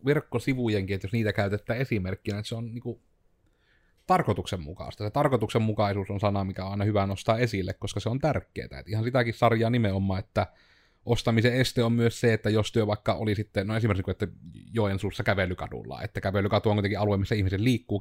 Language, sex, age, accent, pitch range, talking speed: Finnish, male, 30-49, native, 95-115 Hz, 180 wpm